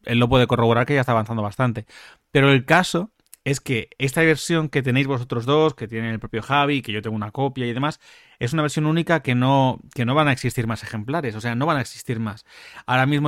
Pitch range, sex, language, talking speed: 115-145 Hz, male, Spanish, 245 wpm